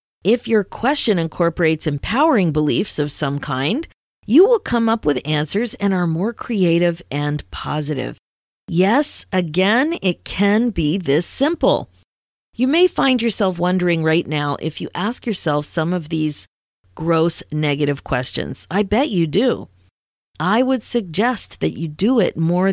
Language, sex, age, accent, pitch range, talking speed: English, female, 40-59, American, 155-230 Hz, 150 wpm